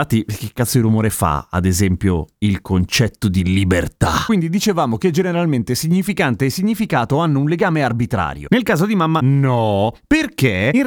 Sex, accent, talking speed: male, native, 165 wpm